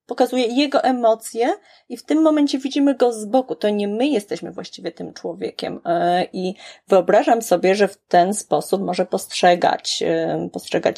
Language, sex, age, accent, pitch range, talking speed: Polish, female, 30-49, native, 170-240 Hz, 155 wpm